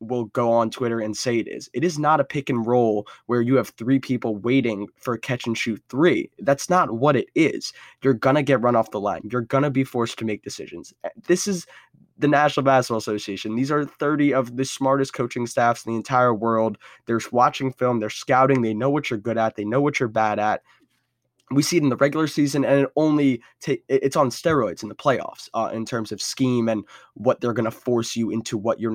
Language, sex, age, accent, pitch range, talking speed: English, male, 20-39, American, 115-140 Hz, 235 wpm